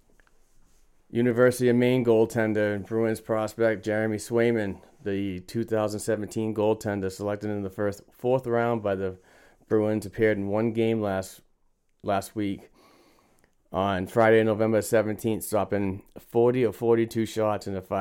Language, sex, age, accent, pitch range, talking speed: English, male, 30-49, American, 95-110 Hz, 130 wpm